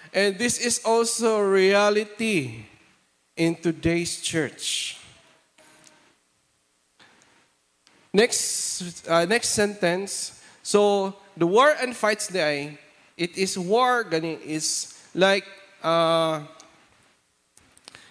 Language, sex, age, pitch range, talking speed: English, male, 20-39, 170-230 Hz, 80 wpm